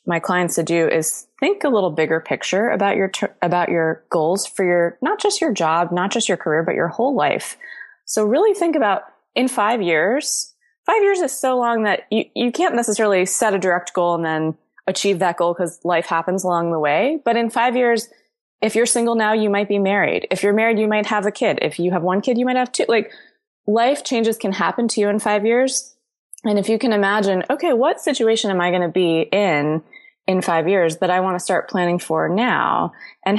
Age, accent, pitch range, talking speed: 20-39, American, 170-225 Hz, 230 wpm